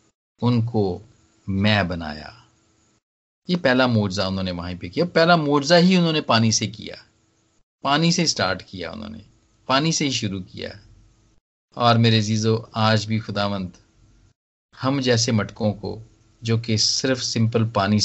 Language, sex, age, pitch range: Hindi, male, 50-69, 105-135 Hz